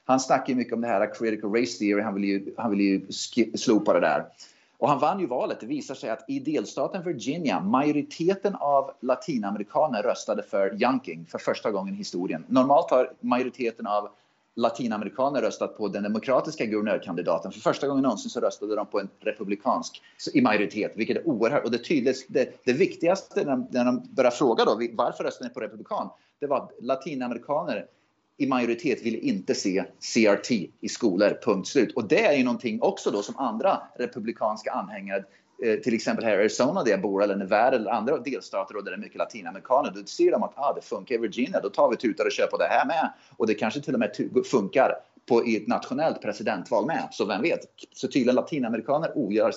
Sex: male